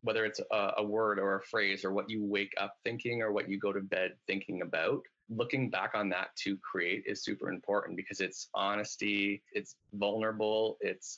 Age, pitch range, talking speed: 20-39, 100-110 Hz, 200 wpm